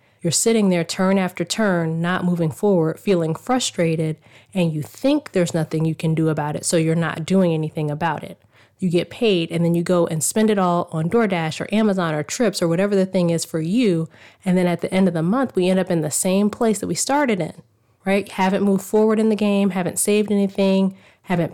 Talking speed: 230 wpm